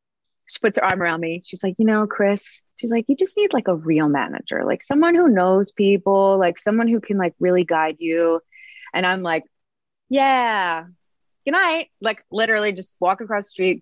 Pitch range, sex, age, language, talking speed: 175-245 Hz, female, 20-39, English, 200 wpm